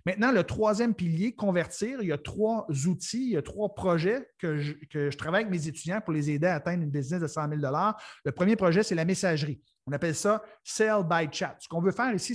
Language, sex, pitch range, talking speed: French, male, 160-195 Hz, 240 wpm